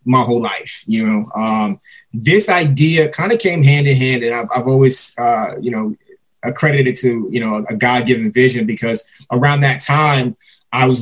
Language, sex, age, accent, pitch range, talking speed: English, male, 20-39, American, 120-145 Hz, 190 wpm